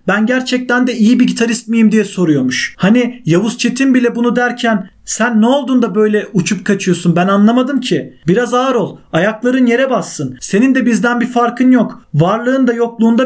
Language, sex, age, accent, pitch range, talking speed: Turkish, male, 40-59, native, 200-245 Hz, 180 wpm